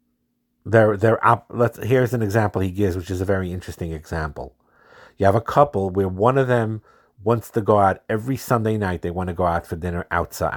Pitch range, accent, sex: 90-120 Hz, American, male